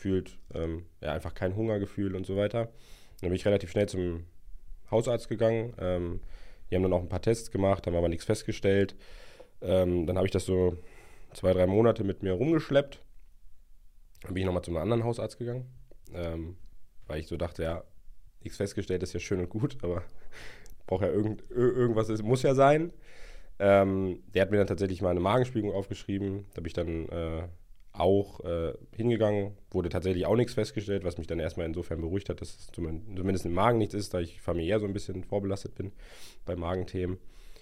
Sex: male